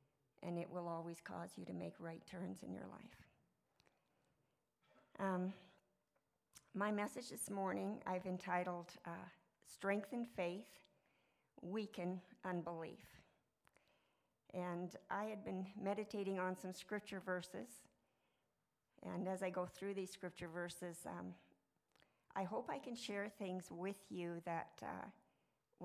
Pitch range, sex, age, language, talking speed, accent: 180-205 Hz, female, 50-69, English, 125 wpm, American